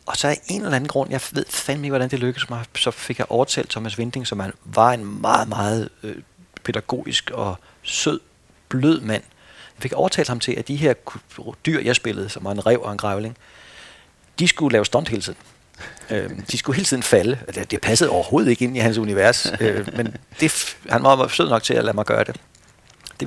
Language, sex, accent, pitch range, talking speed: Danish, male, native, 105-130 Hz, 210 wpm